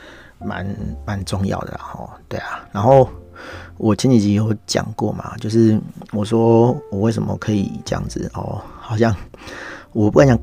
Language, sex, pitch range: Chinese, male, 95-115 Hz